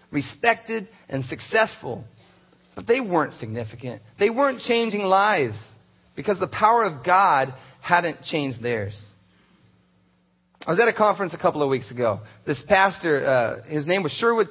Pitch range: 125-190 Hz